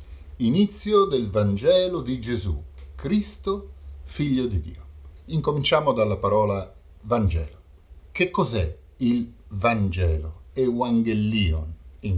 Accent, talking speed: native, 95 wpm